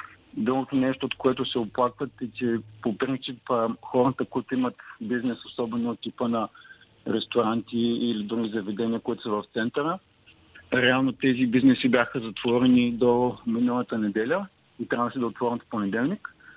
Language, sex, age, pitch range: Bulgarian, male, 50-69, 115-130 Hz